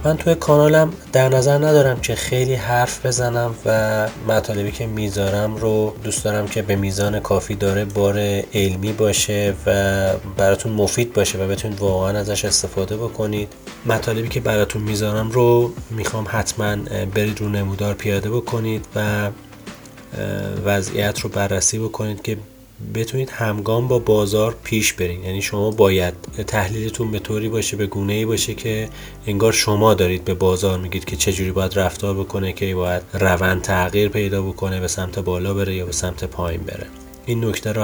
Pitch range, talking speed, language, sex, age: 95-110 Hz, 160 wpm, Persian, male, 30-49